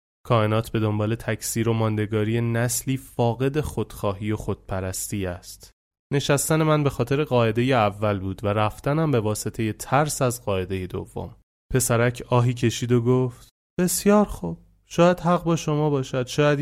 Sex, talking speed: male, 145 wpm